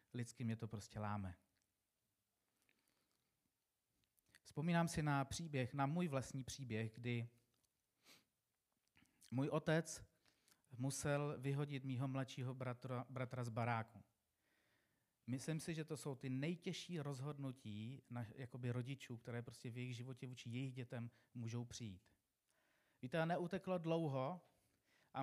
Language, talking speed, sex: Czech, 120 wpm, male